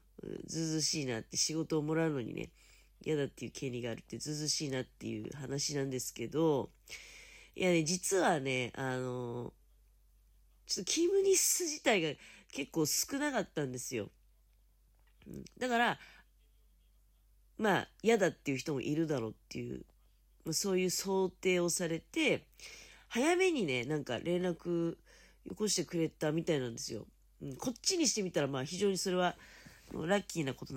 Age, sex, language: 40-59, female, Japanese